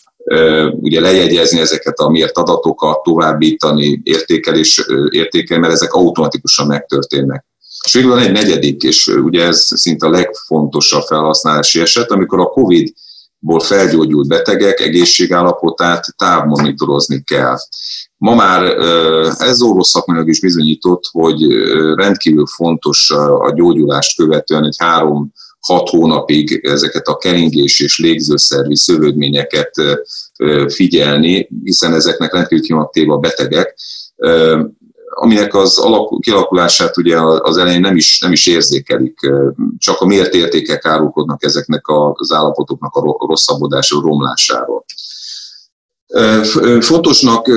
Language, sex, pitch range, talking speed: Hungarian, male, 75-90 Hz, 105 wpm